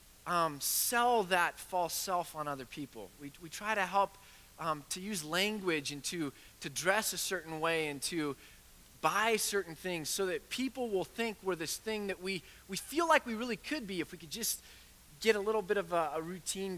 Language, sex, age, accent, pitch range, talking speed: English, male, 30-49, American, 140-185 Hz, 205 wpm